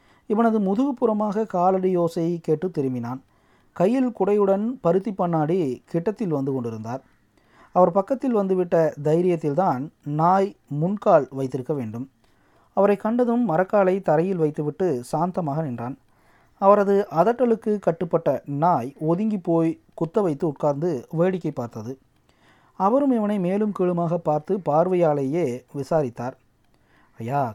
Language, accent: Tamil, native